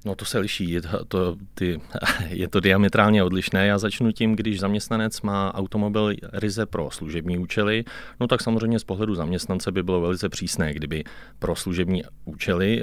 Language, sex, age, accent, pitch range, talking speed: Czech, male, 30-49, native, 90-110 Hz, 175 wpm